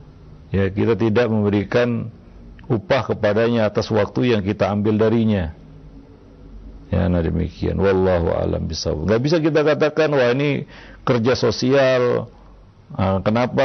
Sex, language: male, Indonesian